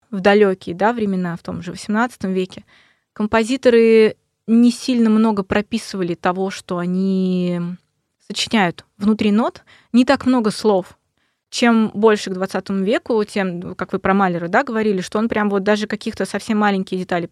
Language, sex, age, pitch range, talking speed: Russian, female, 20-39, 185-230 Hz, 155 wpm